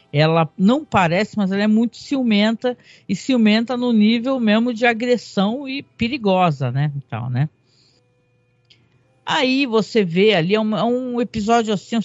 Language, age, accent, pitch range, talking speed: Portuguese, 50-69, Brazilian, 155-215 Hz, 155 wpm